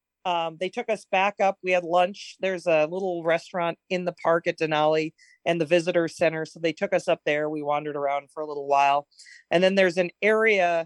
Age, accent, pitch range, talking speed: 40-59, American, 165-200 Hz, 220 wpm